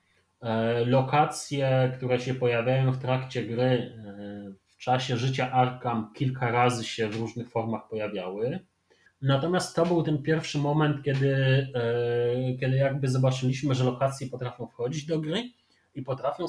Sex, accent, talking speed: male, native, 130 wpm